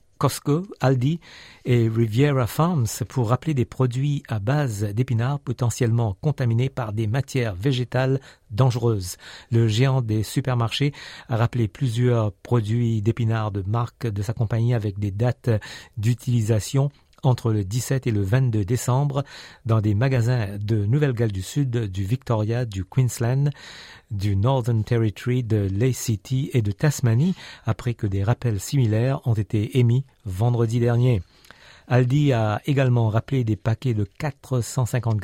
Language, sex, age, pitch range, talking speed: French, male, 50-69, 110-130 Hz, 140 wpm